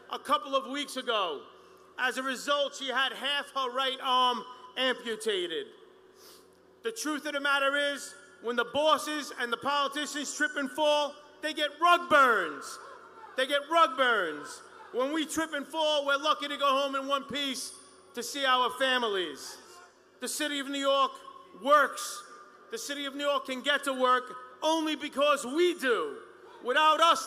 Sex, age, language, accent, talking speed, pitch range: male, 40-59, English, American, 165 wpm, 265-315 Hz